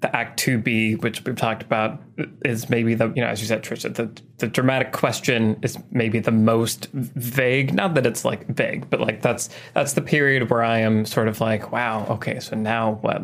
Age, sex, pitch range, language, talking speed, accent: 20-39, male, 115-135 Hz, English, 220 wpm, American